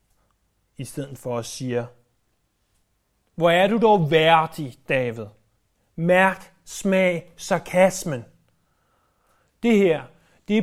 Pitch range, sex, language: 125-180 Hz, male, Danish